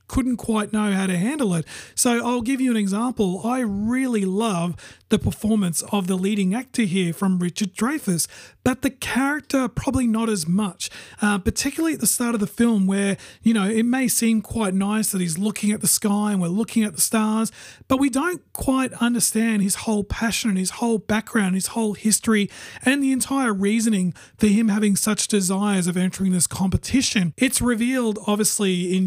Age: 30-49